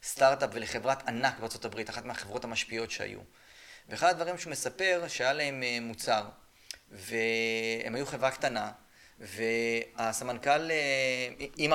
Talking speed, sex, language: 105 wpm, male, Hebrew